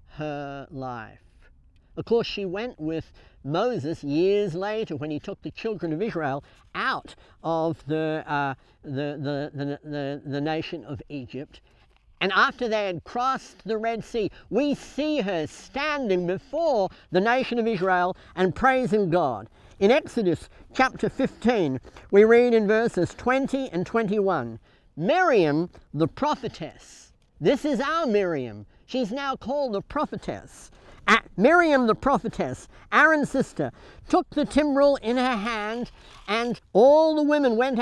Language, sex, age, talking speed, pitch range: English, male, 60-79, 130 wpm, 155-255 Hz